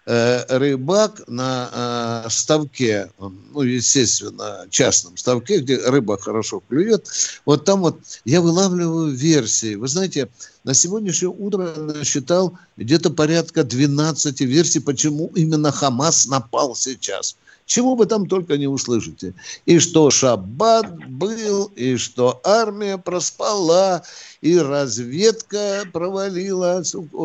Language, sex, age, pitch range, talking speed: Russian, male, 60-79, 130-185 Hz, 110 wpm